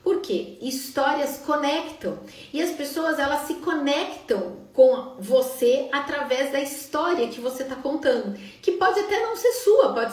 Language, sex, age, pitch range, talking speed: Portuguese, female, 40-59, 230-280 Hz, 155 wpm